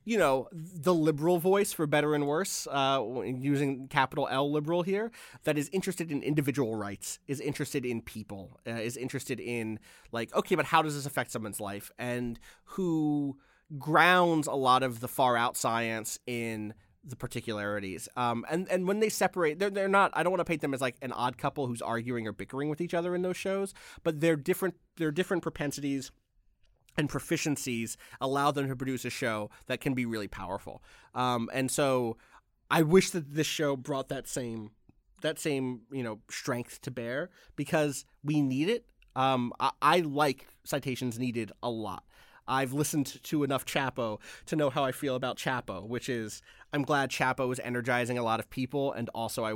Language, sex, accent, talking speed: English, male, American, 190 wpm